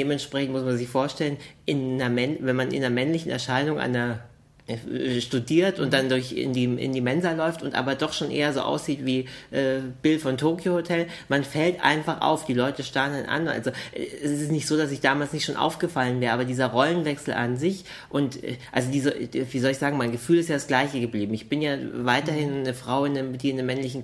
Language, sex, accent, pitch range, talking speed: German, male, German, 130-145 Hz, 225 wpm